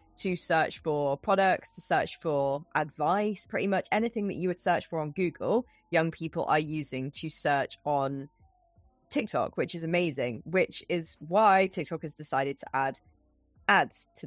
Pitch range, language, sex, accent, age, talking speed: 150-180 Hz, English, female, British, 20-39, 165 wpm